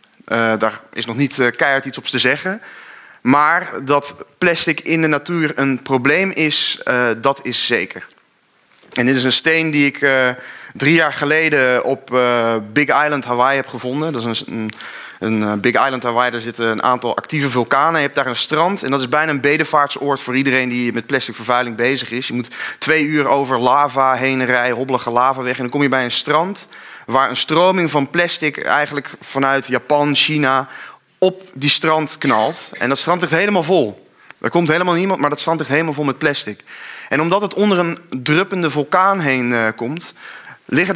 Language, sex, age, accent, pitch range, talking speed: Dutch, male, 30-49, Dutch, 130-160 Hz, 200 wpm